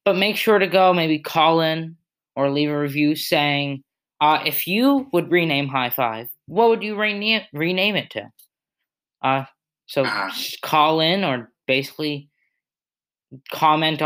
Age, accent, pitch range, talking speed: 20-39, American, 135-165 Hz, 150 wpm